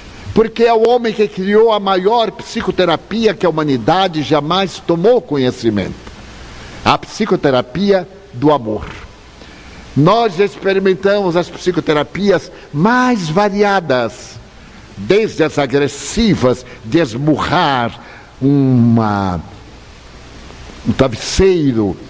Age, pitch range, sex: 60-79, 135-205 Hz, male